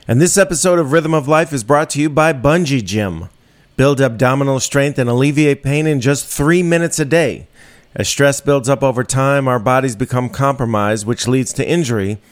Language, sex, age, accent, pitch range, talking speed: English, male, 40-59, American, 125-155 Hz, 195 wpm